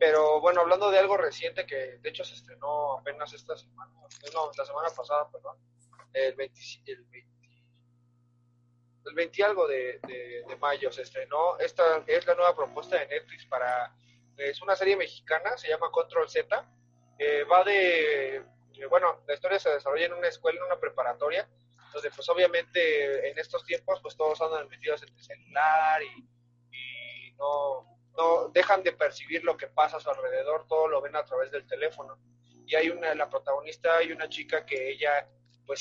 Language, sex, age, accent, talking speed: Spanish, male, 30-49, Mexican, 175 wpm